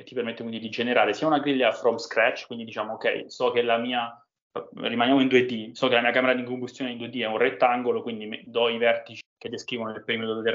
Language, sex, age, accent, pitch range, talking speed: Italian, male, 20-39, native, 110-125 Hz, 235 wpm